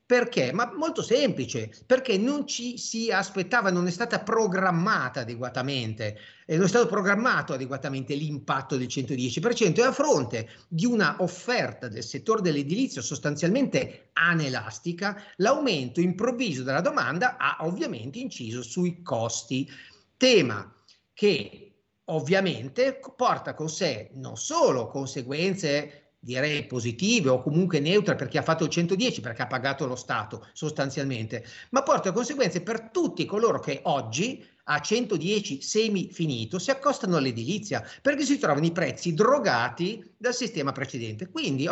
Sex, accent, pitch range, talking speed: male, native, 135-220 Hz, 130 wpm